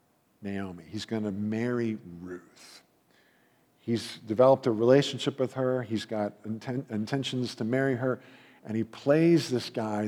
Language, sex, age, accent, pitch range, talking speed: English, male, 50-69, American, 110-140 Hz, 135 wpm